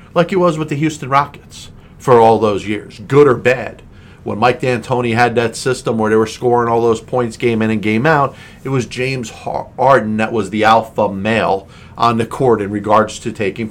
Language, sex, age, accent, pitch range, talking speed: English, male, 50-69, American, 110-135 Hz, 210 wpm